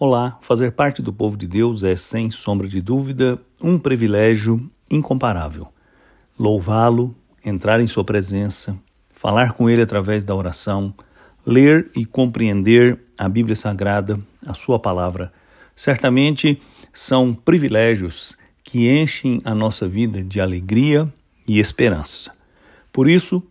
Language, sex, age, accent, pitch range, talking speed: English, male, 60-79, Brazilian, 105-135 Hz, 125 wpm